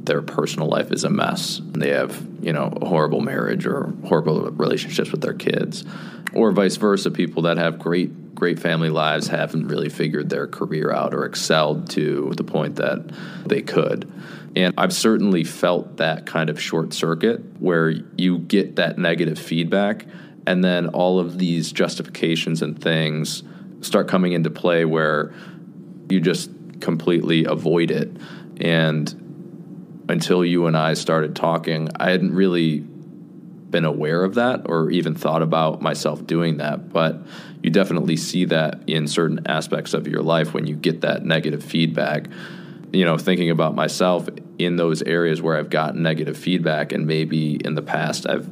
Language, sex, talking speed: English, male, 165 wpm